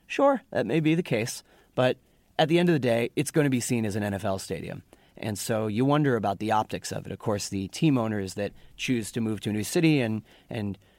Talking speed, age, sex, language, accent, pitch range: 250 wpm, 30-49, male, English, American, 105-140 Hz